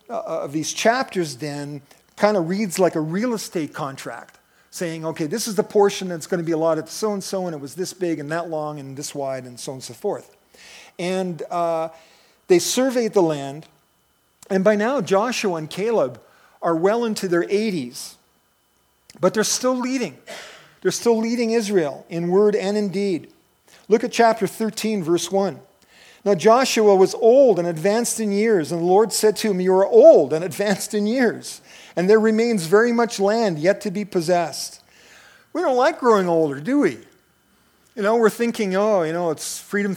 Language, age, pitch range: English, 50-69, 170-225 Hz